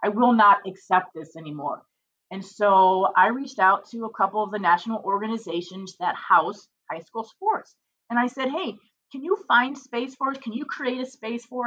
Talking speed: 200 wpm